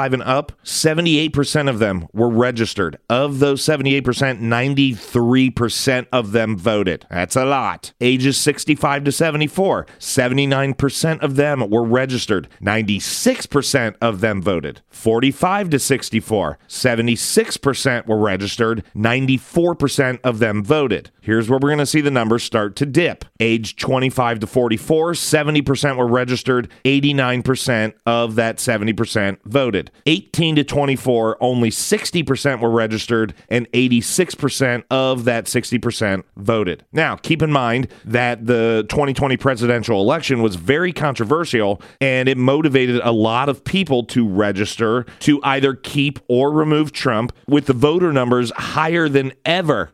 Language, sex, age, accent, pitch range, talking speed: English, male, 40-59, American, 115-140 Hz, 130 wpm